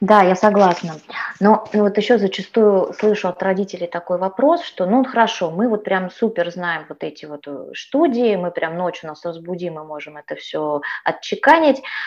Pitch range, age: 175-220 Hz, 20-39